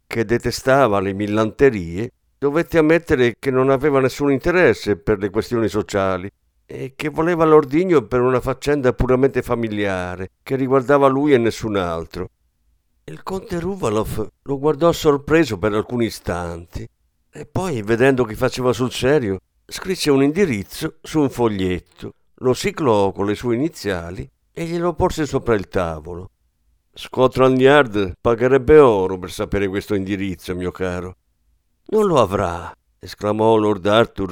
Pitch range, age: 95-145 Hz, 50-69